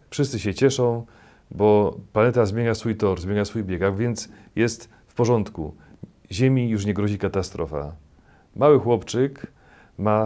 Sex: male